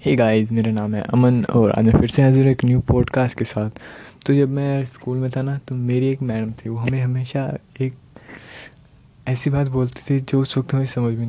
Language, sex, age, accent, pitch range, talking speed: Hindi, male, 20-39, native, 120-135 Hz, 235 wpm